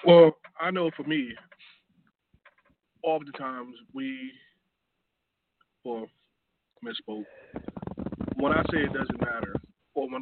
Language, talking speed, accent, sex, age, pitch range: English, 105 wpm, American, male, 20-39, 120-150 Hz